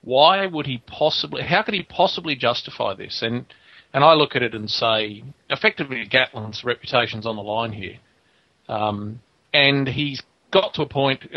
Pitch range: 115-135 Hz